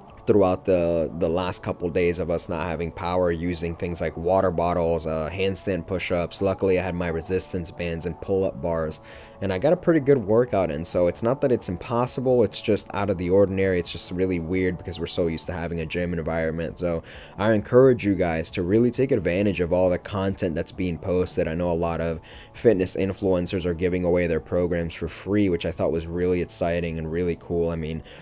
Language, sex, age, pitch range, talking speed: English, male, 20-39, 85-95 Hz, 215 wpm